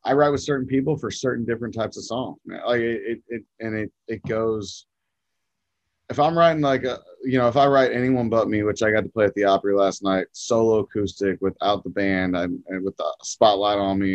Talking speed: 230 wpm